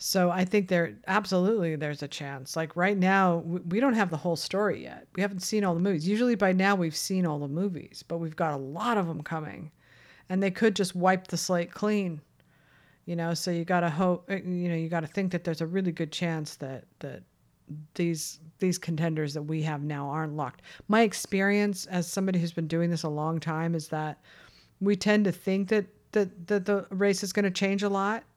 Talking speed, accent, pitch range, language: 225 wpm, American, 160-195 Hz, English